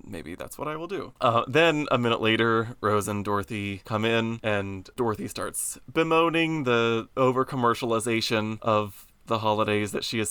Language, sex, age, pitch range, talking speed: English, male, 20-39, 110-130 Hz, 165 wpm